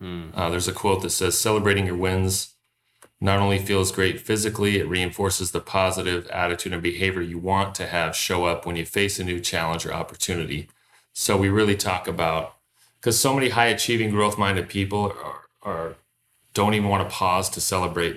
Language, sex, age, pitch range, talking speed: English, male, 30-49, 85-100 Hz, 190 wpm